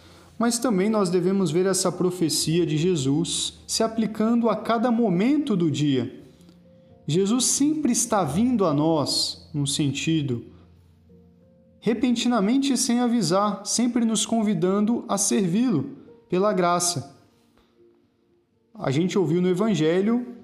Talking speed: 115 wpm